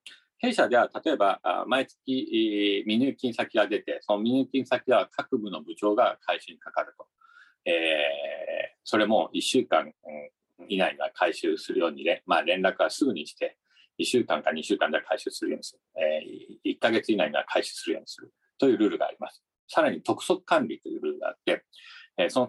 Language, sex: Japanese, male